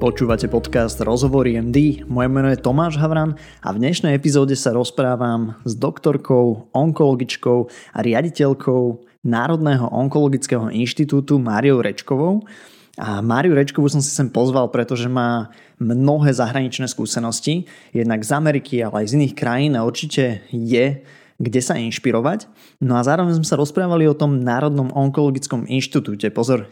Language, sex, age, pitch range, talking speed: Slovak, male, 20-39, 120-150 Hz, 140 wpm